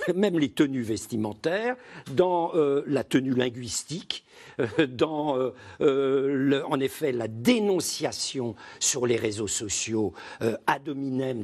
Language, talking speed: French, 125 wpm